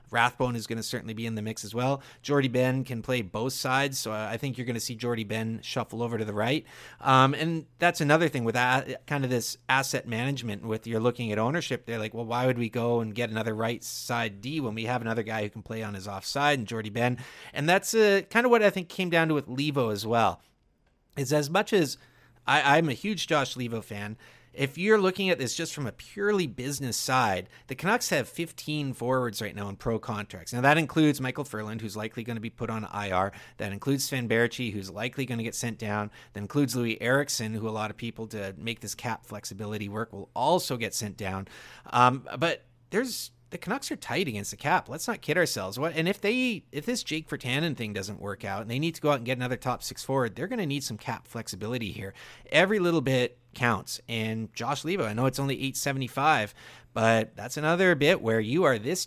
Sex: male